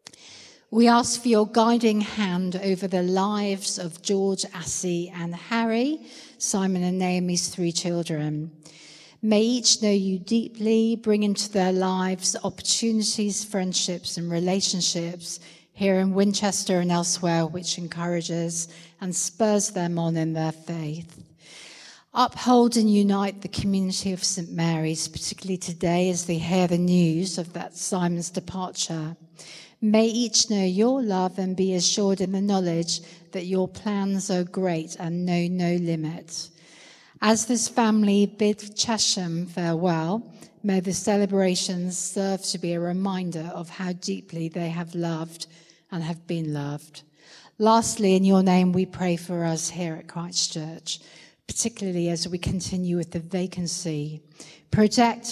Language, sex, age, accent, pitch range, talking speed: English, female, 50-69, British, 170-200 Hz, 140 wpm